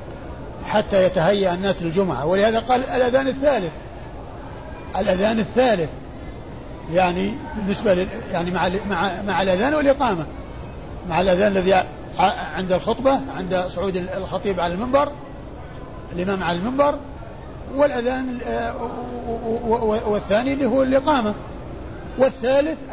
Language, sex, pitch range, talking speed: Arabic, male, 175-230 Hz, 100 wpm